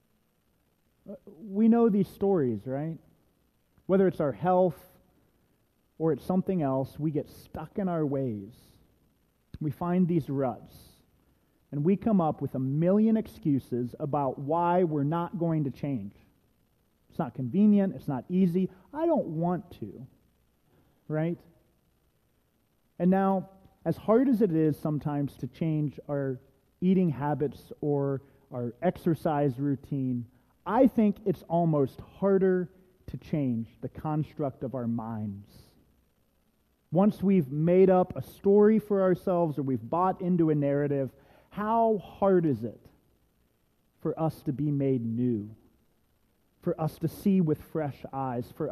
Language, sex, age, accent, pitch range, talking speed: English, male, 30-49, American, 135-185 Hz, 135 wpm